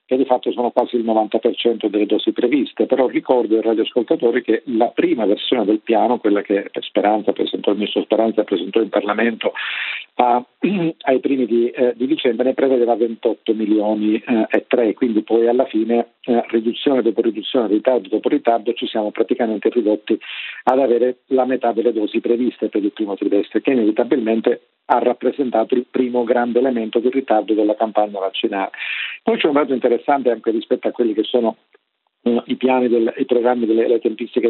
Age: 50-69